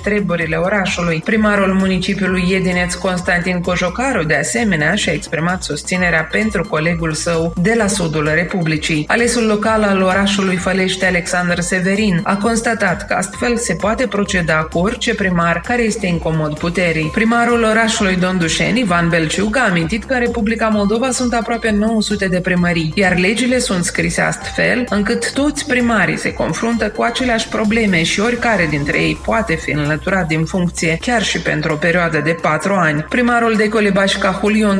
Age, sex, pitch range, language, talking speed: 30-49, female, 170-210 Hz, Romanian, 160 wpm